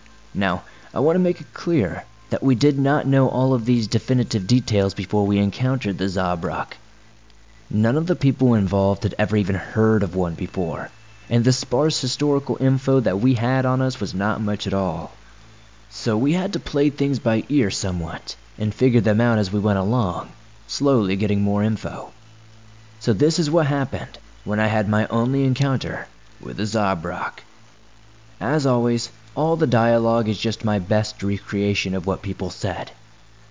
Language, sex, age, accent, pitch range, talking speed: English, male, 20-39, American, 105-125 Hz, 175 wpm